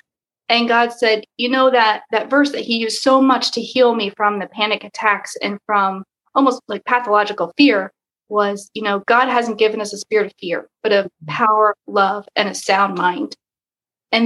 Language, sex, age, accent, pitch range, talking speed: English, female, 30-49, American, 205-255 Hz, 195 wpm